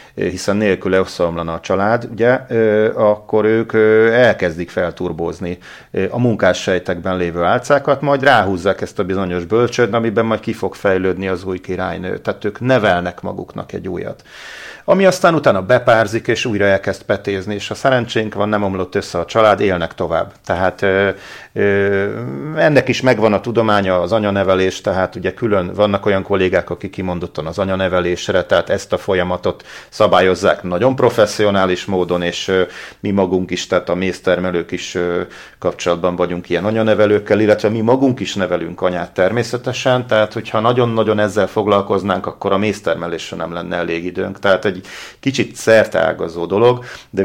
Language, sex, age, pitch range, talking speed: Hungarian, male, 40-59, 90-115 Hz, 150 wpm